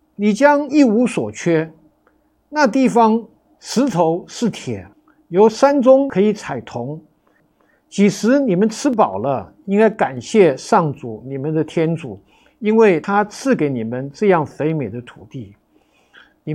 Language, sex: Chinese, male